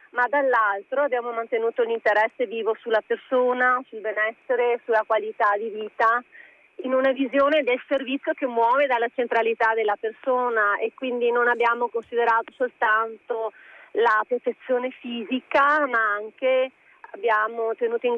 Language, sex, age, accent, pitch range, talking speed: Italian, female, 30-49, native, 225-260 Hz, 130 wpm